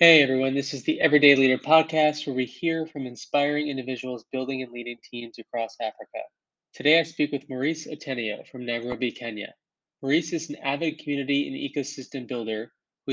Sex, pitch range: male, 125-145 Hz